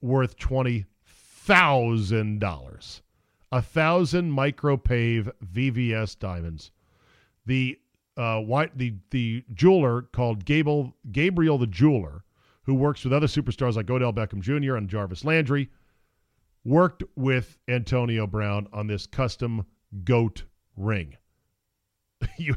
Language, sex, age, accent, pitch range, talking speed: English, male, 40-59, American, 105-145 Hz, 115 wpm